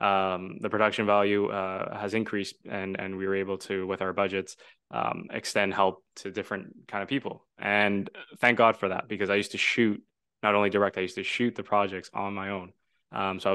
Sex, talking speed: male, 215 wpm